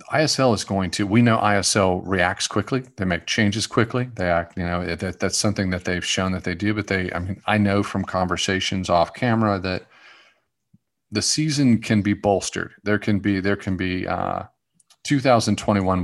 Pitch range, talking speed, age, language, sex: 90-105 Hz, 185 wpm, 40-59, English, male